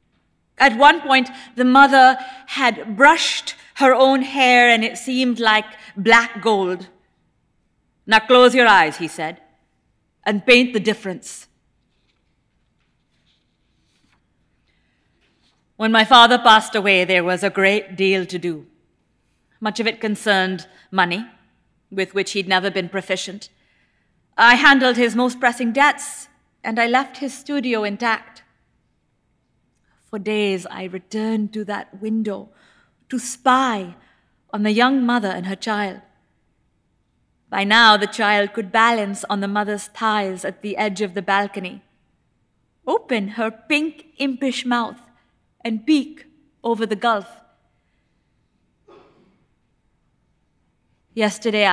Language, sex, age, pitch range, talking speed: English, female, 40-59, 195-245 Hz, 120 wpm